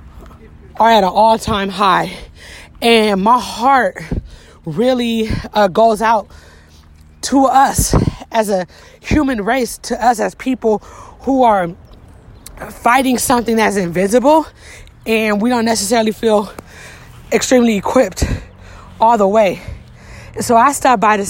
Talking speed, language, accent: 125 wpm, English, American